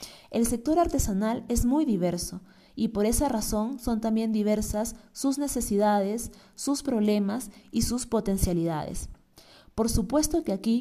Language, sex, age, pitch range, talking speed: Spanish, female, 30-49, 190-235 Hz, 135 wpm